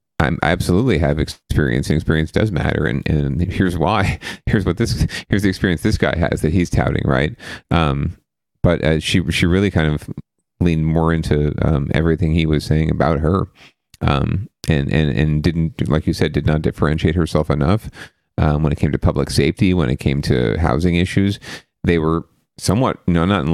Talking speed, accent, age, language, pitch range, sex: 195 wpm, American, 40-59, English, 80-95 Hz, male